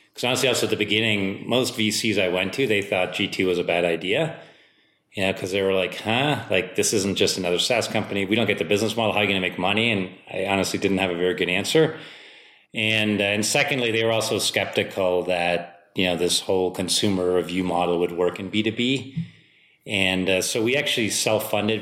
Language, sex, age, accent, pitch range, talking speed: English, male, 30-49, American, 95-115 Hz, 220 wpm